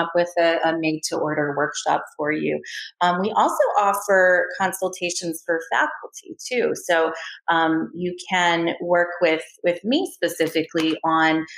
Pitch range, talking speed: 160-215 Hz, 135 wpm